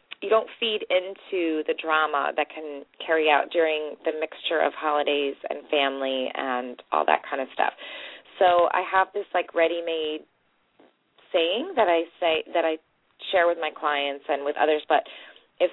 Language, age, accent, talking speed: English, 30-49, American, 170 wpm